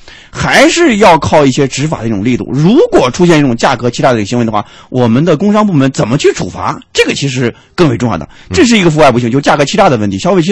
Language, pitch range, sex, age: Chinese, 130-220 Hz, male, 30-49